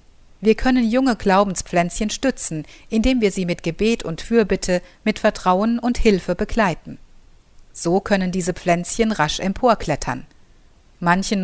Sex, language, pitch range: female, German, 170-220 Hz